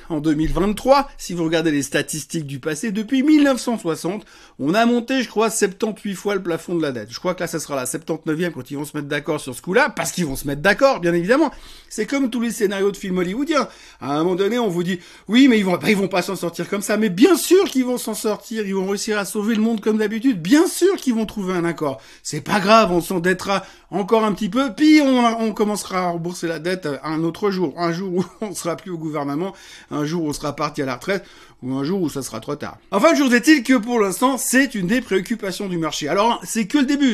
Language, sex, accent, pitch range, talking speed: French, male, French, 165-230 Hz, 265 wpm